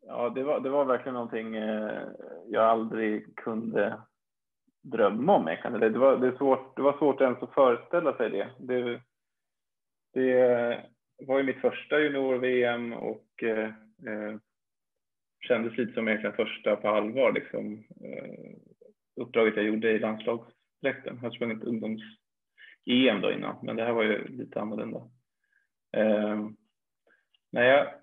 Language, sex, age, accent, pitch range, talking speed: Swedish, male, 30-49, Norwegian, 110-130 Hz, 135 wpm